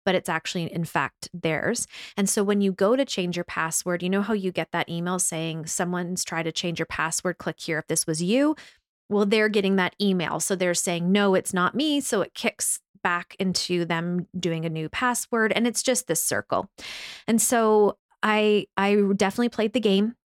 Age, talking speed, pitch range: 20-39, 205 wpm, 175-215 Hz